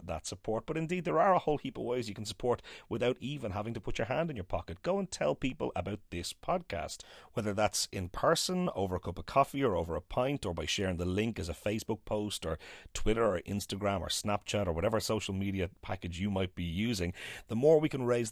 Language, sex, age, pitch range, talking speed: English, male, 30-49, 90-120 Hz, 240 wpm